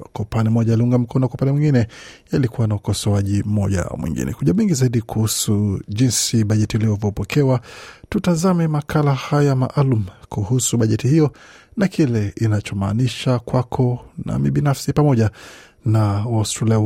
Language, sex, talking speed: Swahili, male, 120 wpm